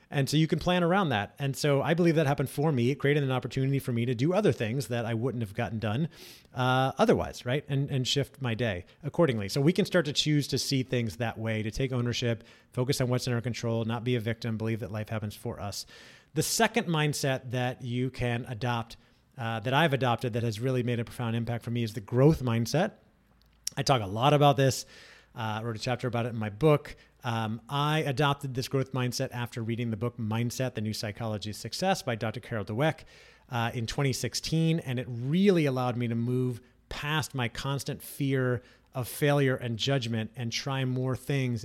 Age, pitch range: 30-49, 115-145 Hz